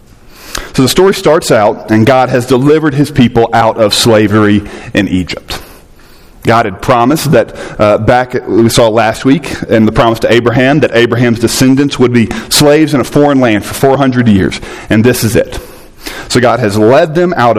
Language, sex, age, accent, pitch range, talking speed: English, male, 40-59, American, 110-145 Hz, 185 wpm